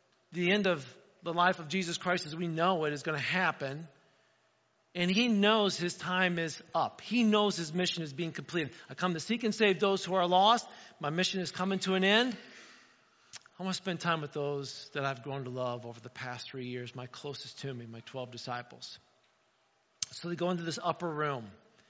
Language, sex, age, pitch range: English, male, 40-59, 150-190 Hz